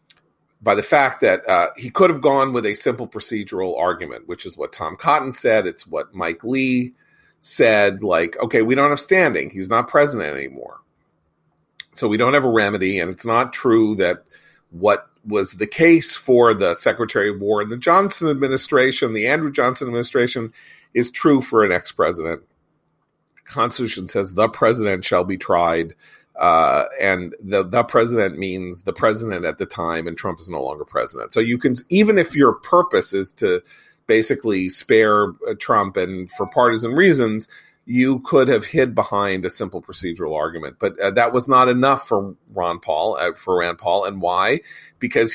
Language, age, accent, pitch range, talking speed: English, 40-59, American, 100-140 Hz, 175 wpm